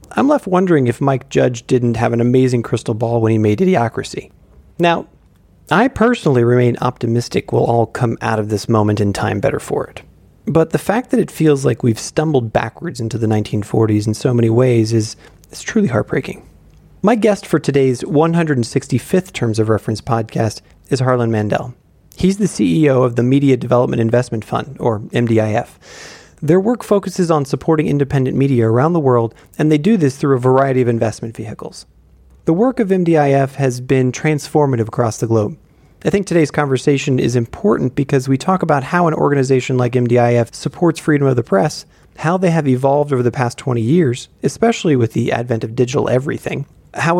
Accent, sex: American, male